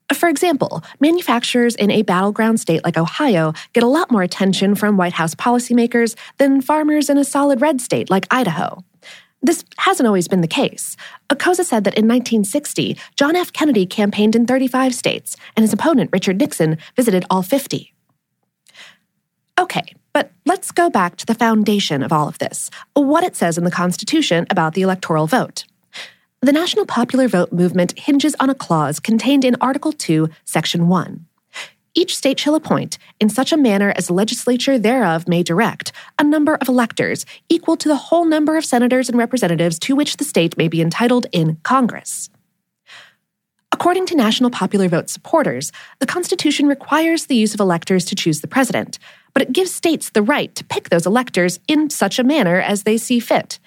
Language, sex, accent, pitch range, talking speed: English, female, American, 185-290 Hz, 180 wpm